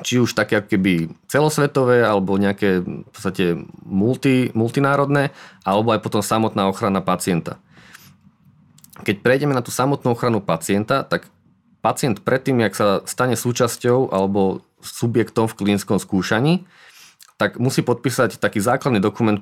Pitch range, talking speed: 105-125 Hz, 130 wpm